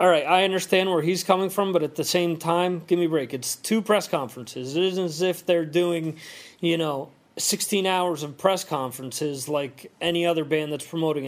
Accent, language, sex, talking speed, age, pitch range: American, English, male, 215 wpm, 30-49, 150-175 Hz